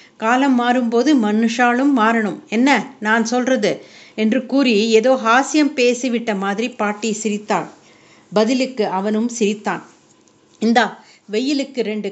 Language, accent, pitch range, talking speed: Tamil, native, 200-240 Hz, 105 wpm